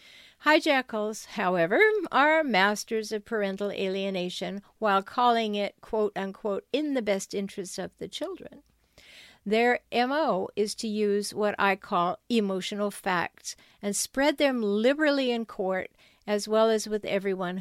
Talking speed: 135 wpm